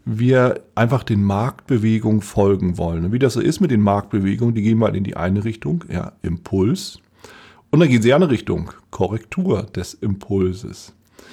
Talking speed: 175 wpm